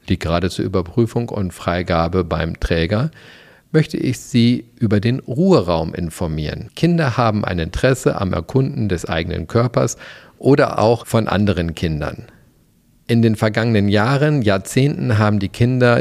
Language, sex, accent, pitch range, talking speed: German, male, German, 100-125 Hz, 140 wpm